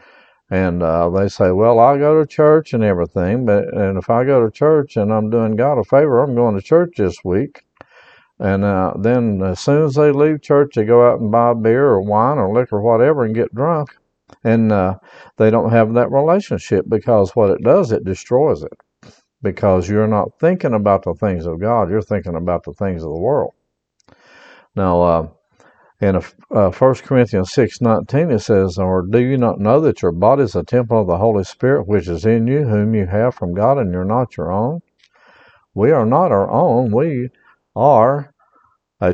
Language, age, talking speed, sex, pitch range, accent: English, 50-69, 200 wpm, male, 95-135 Hz, American